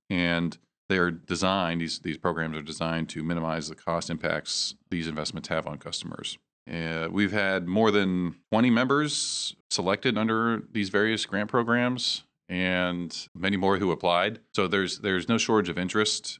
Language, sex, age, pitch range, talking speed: English, male, 40-59, 80-95 Hz, 165 wpm